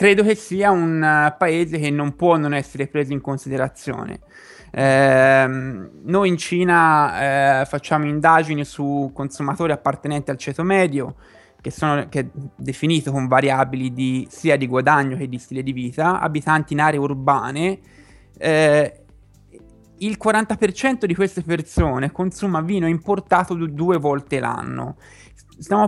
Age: 20-39